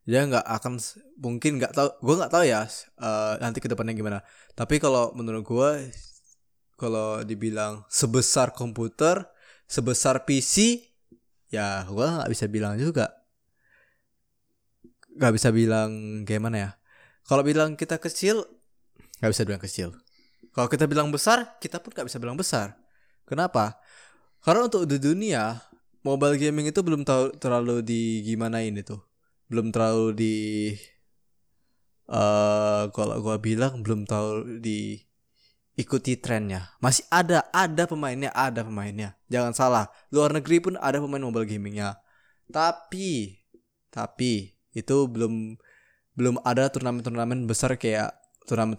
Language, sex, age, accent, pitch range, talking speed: Indonesian, male, 20-39, native, 110-135 Hz, 130 wpm